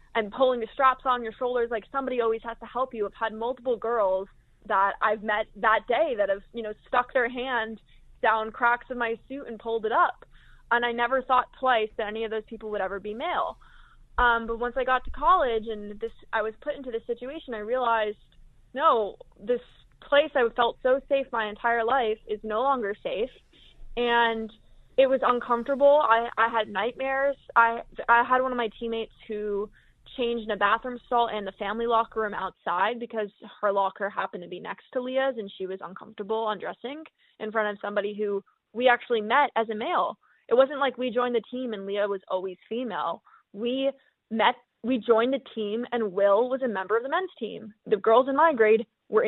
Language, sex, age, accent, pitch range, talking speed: English, female, 20-39, American, 215-255 Hz, 205 wpm